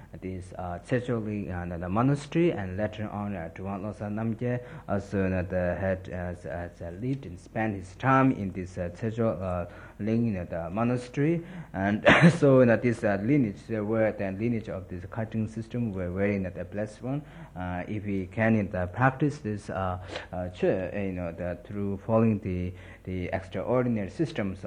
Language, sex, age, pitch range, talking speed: Italian, male, 50-69, 95-120 Hz, 185 wpm